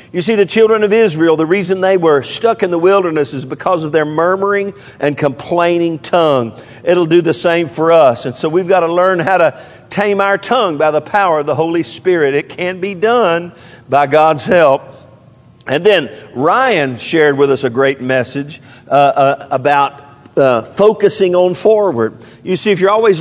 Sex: male